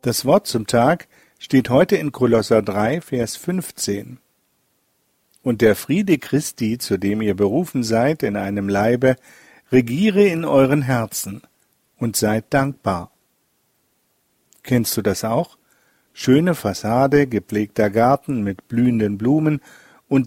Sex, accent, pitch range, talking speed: male, German, 115-155 Hz, 125 wpm